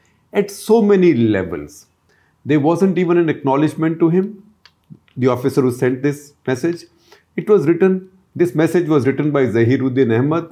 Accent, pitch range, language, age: Indian, 115-155 Hz, English, 50-69